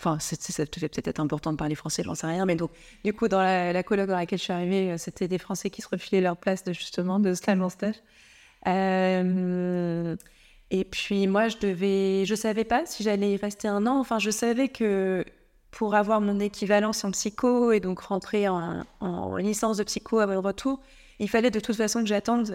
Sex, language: female, French